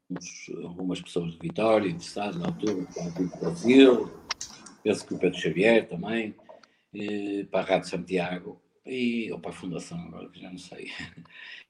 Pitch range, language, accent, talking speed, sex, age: 100-135 Hz, Portuguese, Portuguese, 165 wpm, male, 50-69